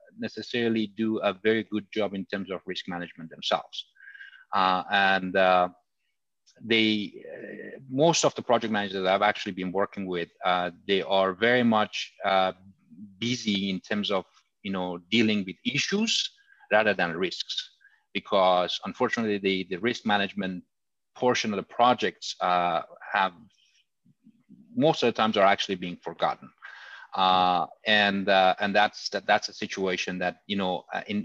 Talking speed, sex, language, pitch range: 150 wpm, male, English, 90-110 Hz